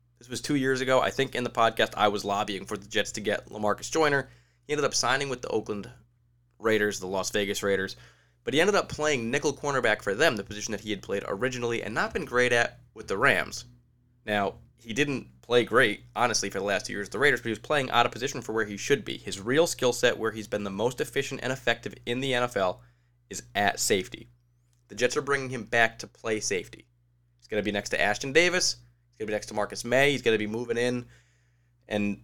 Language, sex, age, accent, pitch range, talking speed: English, male, 20-39, American, 105-125 Hz, 245 wpm